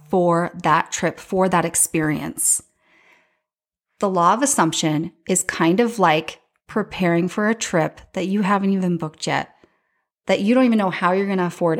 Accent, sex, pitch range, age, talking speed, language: American, female, 175-235 Hz, 30-49, 175 wpm, English